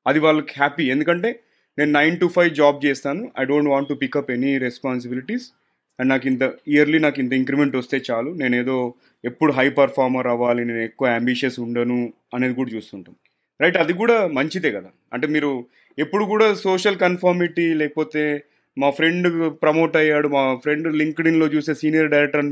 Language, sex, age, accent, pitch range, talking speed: Telugu, male, 30-49, native, 135-175 Hz, 165 wpm